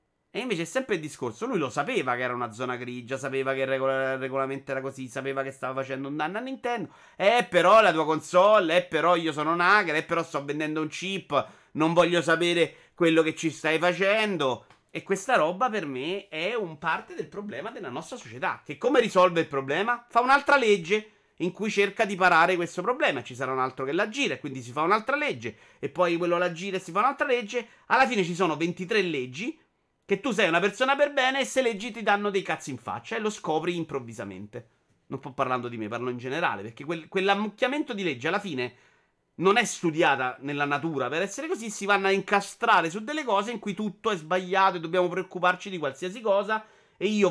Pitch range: 145-210 Hz